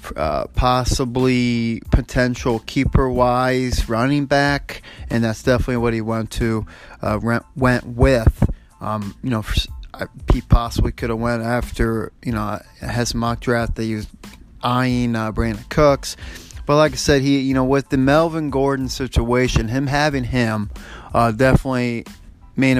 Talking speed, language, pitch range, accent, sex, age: 150 wpm, English, 110-130 Hz, American, male, 30-49